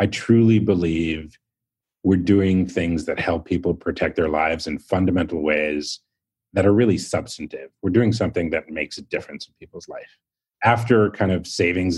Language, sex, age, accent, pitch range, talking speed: English, male, 30-49, American, 85-105 Hz, 165 wpm